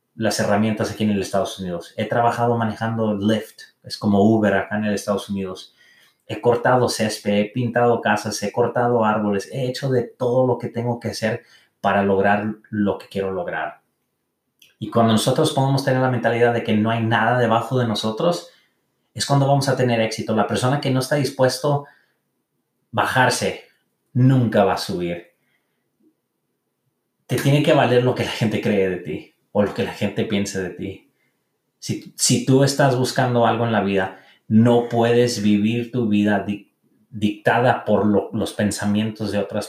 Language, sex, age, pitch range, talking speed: English, male, 30-49, 105-120 Hz, 175 wpm